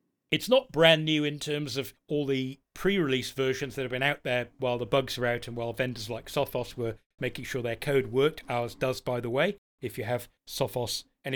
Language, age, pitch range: English, 40-59, 125-160 Hz